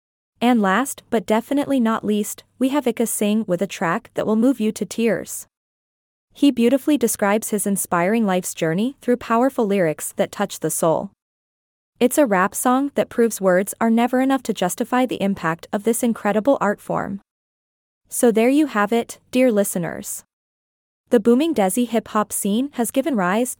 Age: 20-39